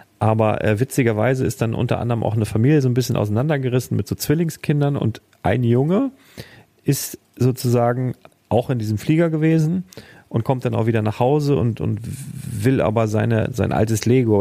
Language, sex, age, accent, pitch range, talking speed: German, male, 40-59, German, 110-140 Hz, 170 wpm